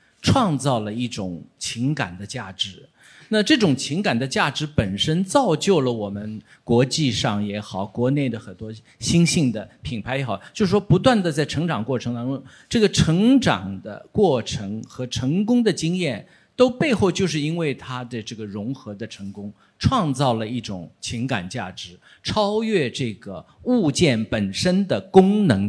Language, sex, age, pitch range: Chinese, male, 50-69, 110-165 Hz